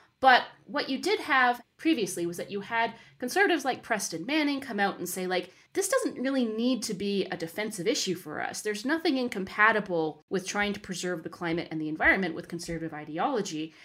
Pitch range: 165-230 Hz